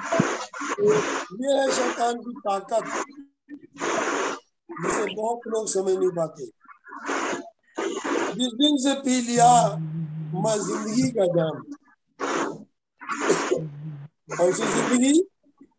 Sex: male